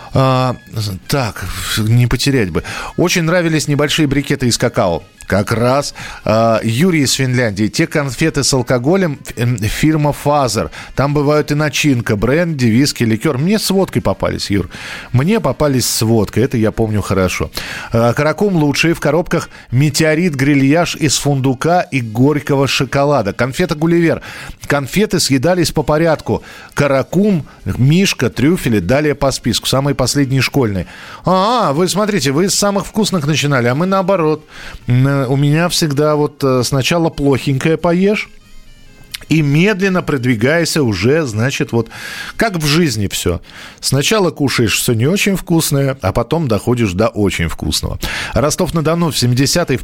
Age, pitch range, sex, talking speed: 40-59, 115-155 Hz, male, 140 wpm